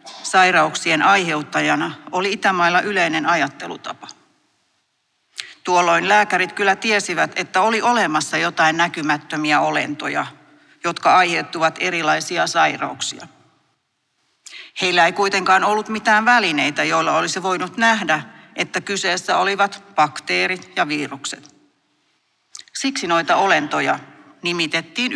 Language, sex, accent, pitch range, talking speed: Finnish, female, native, 160-205 Hz, 95 wpm